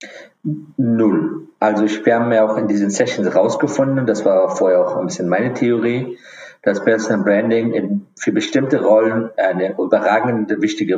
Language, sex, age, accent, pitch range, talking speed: German, male, 50-69, German, 100-120 Hz, 160 wpm